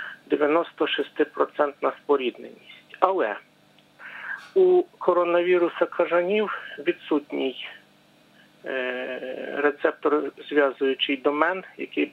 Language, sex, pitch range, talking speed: Ukrainian, male, 135-200 Hz, 60 wpm